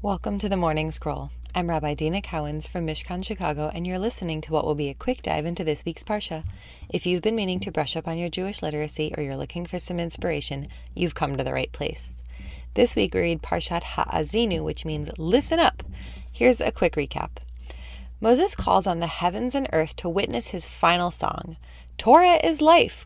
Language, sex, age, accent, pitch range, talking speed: English, female, 20-39, American, 150-205 Hz, 205 wpm